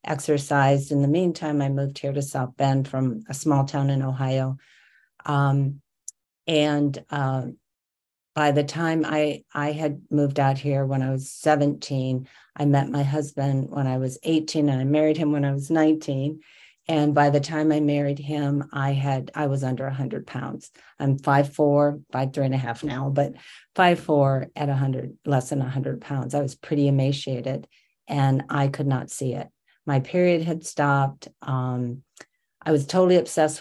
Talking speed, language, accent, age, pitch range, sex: 180 wpm, English, American, 50-69, 135-150 Hz, female